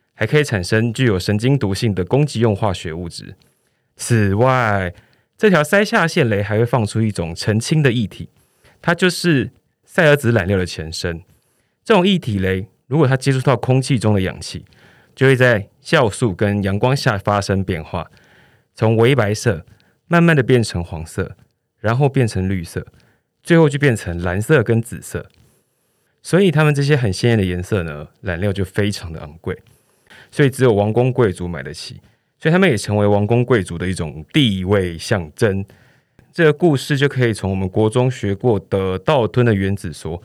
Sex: male